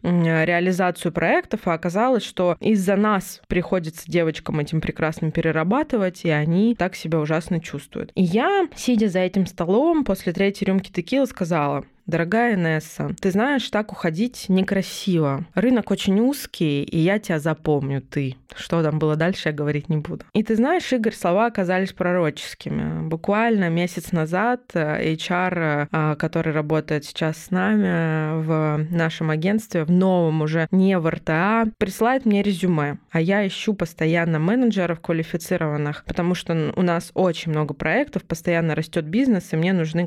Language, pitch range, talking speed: Russian, 160-205 Hz, 150 wpm